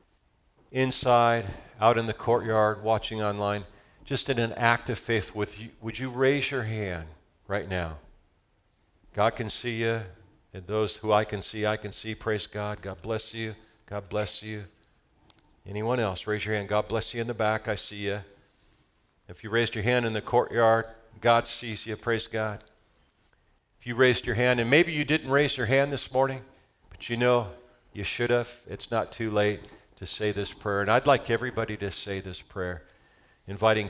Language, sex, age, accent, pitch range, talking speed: English, male, 50-69, American, 100-115 Hz, 190 wpm